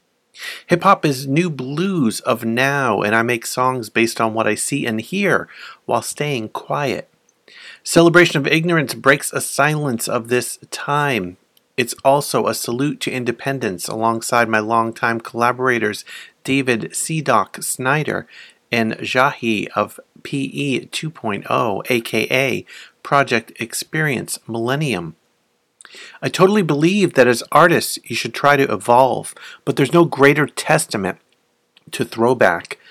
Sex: male